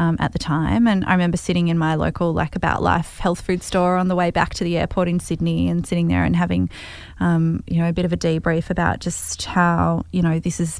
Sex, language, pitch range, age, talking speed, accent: female, English, 165-195 Hz, 20-39, 255 wpm, Australian